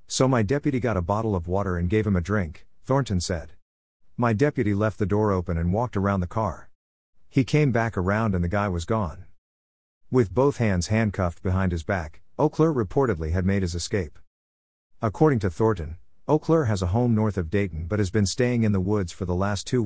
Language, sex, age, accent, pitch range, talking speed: English, male, 50-69, American, 90-115 Hz, 210 wpm